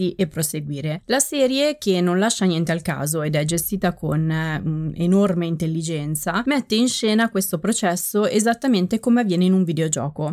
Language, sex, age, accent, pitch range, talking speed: Italian, female, 20-39, native, 170-215 Hz, 165 wpm